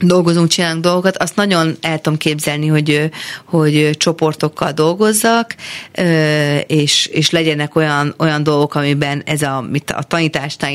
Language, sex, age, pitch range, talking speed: Hungarian, female, 40-59, 145-165 Hz, 130 wpm